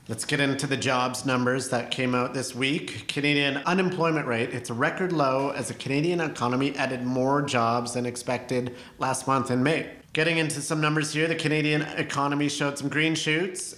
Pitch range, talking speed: 125-145 Hz, 185 wpm